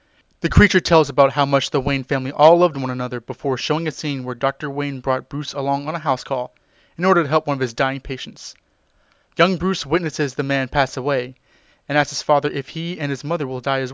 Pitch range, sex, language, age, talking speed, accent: 130-150 Hz, male, English, 30-49, 235 wpm, American